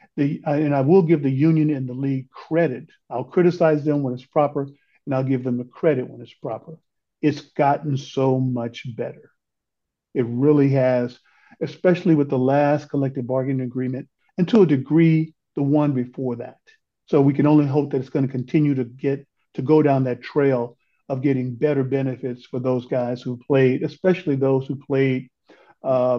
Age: 50-69